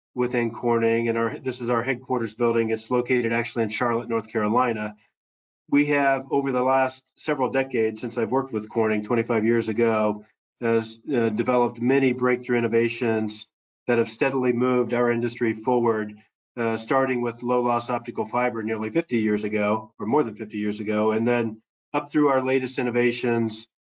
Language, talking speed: English, 170 wpm